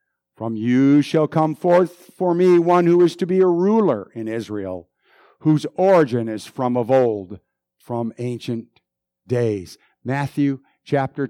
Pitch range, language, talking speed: 120-165 Hz, English, 145 wpm